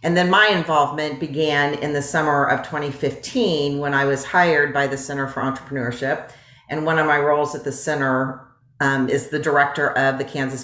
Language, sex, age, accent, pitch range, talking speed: English, female, 40-59, American, 140-160 Hz, 190 wpm